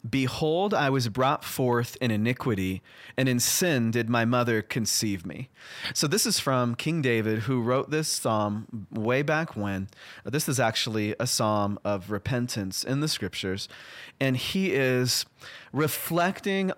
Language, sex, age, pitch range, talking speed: English, male, 30-49, 110-135 Hz, 150 wpm